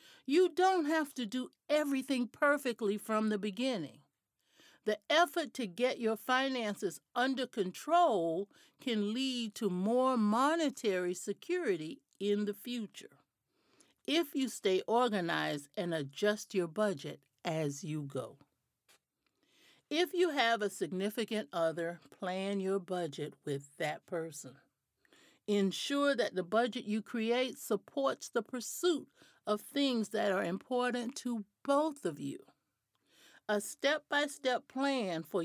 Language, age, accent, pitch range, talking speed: English, 60-79, American, 185-270 Hz, 120 wpm